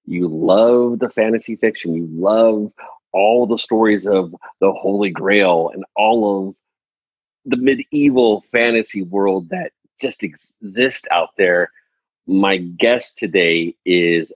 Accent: American